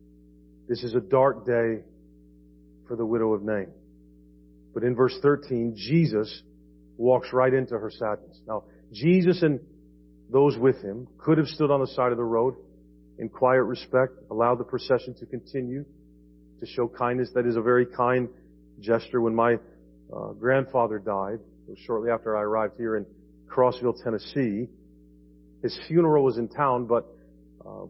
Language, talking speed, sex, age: English, 155 wpm, male, 40-59